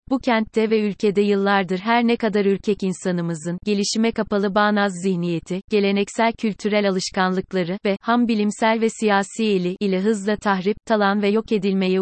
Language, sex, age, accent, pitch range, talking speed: Turkish, female, 30-49, native, 190-220 Hz, 150 wpm